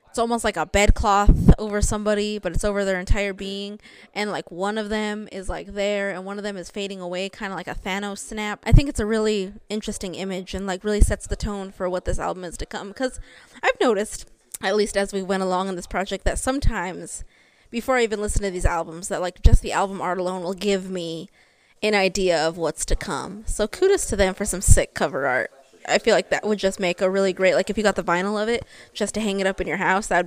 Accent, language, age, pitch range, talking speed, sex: American, English, 20-39, 190-220 Hz, 250 wpm, female